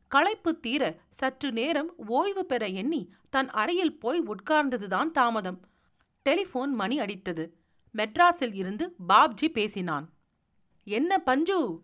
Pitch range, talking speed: 215-300 Hz, 105 wpm